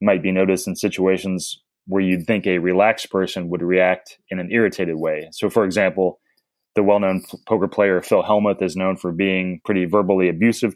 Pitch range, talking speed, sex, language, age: 90-100 Hz, 185 wpm, male, English, 20-39